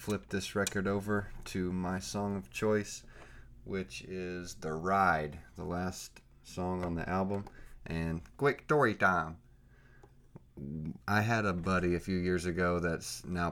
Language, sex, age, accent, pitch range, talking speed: English, male, 30-49, American, 80-100 Hz, 145 wpm